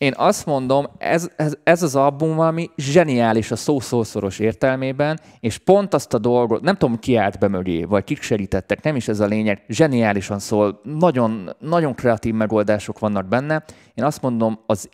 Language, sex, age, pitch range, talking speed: Hungarian, male, 20-39, 105-130 Hz, 175 wpm